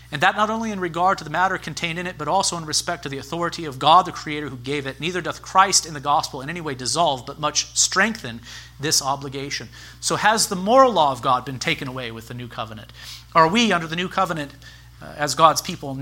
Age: 40-59